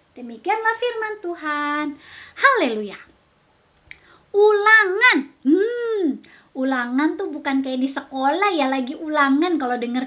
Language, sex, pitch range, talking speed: Indonesian, female, 270-375 Hz, 100 wpm